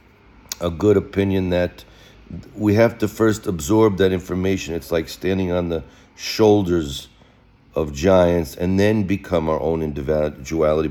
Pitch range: 75-95 Hz